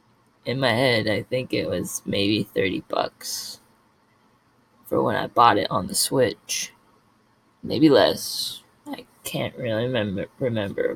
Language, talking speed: English, 130 wpm